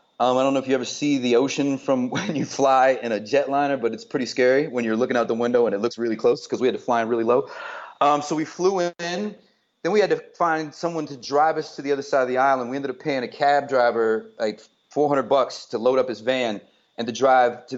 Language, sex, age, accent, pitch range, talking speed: English, male, 30-49, American, 120-155 Hz, 270 wpm